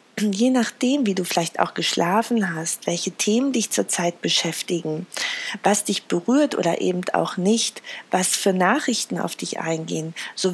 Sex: female